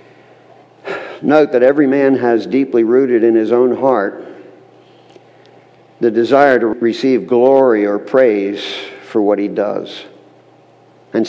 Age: 60-79